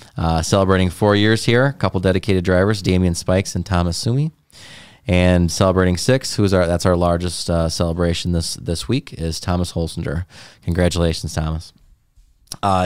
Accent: American